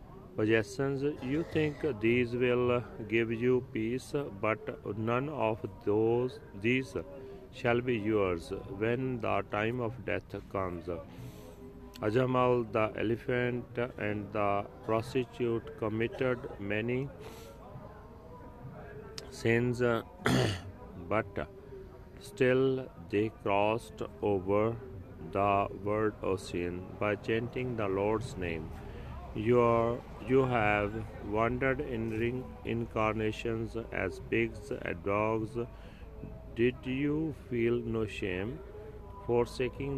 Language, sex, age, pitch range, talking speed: Punjabi, male, 40-59, 100-125 Hz, 95 wpm